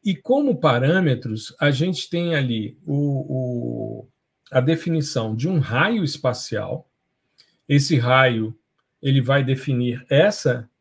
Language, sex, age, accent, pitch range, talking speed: Portuguese, male, 50-69, Brazilian, 125-160 Hz, 115 wpm